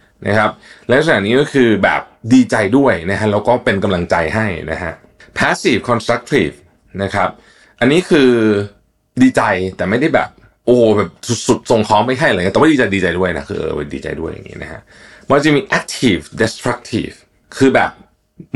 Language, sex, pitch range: Thai, male, 90-120 Hz